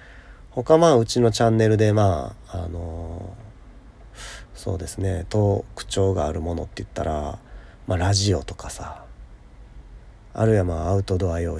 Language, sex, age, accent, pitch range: Japanese, male, 40-59, native, 90-110 Hz